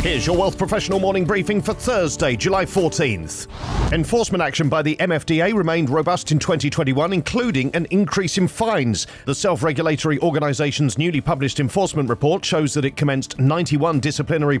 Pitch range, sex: 130-165 Hz, male